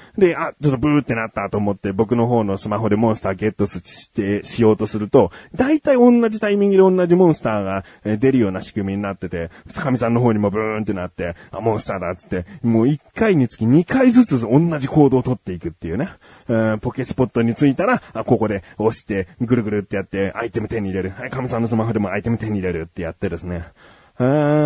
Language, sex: Japanese, male